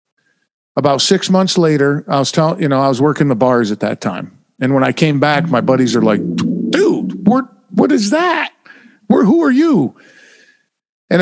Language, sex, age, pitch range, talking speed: English, male, 50-69, 125-165 Hz, 195 wpm